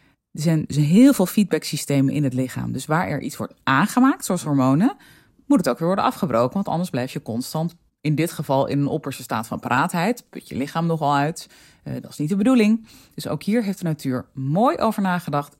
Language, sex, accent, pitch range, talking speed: Dutch, female, Dutch, 135-190 Hz, 215 wpm